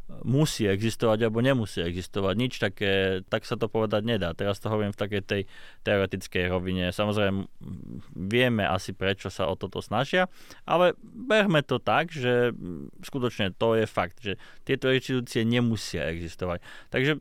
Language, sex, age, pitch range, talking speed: Slovak, male, 20-39, 105-130 Hz, 150 wpm